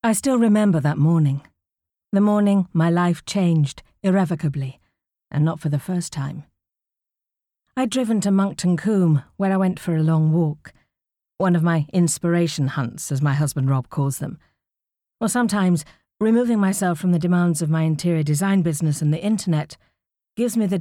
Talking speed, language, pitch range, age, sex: 165 wpm, English, 145-195 Hz, 50-69, female